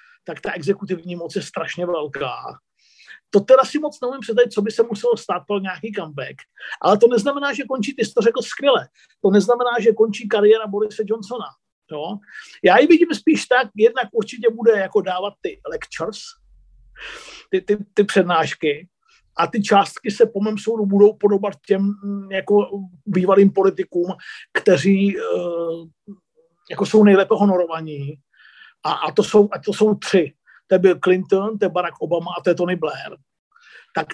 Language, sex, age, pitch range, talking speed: Czech, male, 50-69, 190-240 Hz, 165 wpm